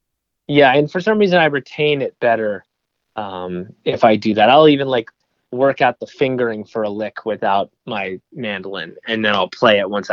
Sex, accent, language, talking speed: male, American, English, 195 wpm